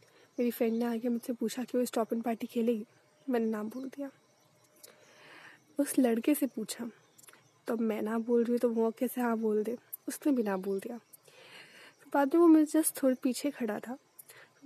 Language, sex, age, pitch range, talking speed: Hindi, female, 20-39, 225-275 Hz, 195 wpm